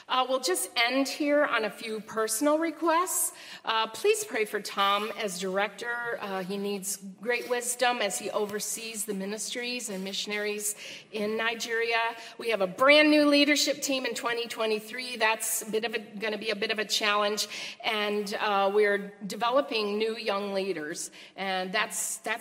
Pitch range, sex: 195-230 Hz, female